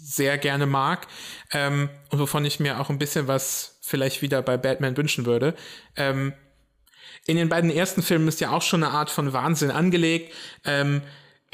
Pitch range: 130-150 Hz